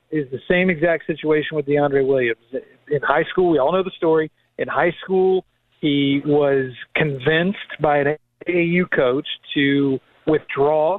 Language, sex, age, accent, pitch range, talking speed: English, male, 40-59, American, 135-165 Hz, 155 wpm